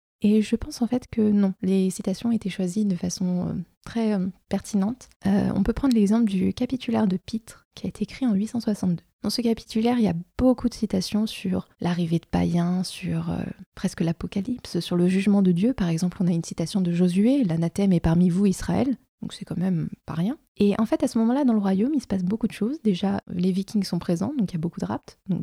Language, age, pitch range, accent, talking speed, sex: French, 20-39, 180-225 Hz, French, 235 wpm, female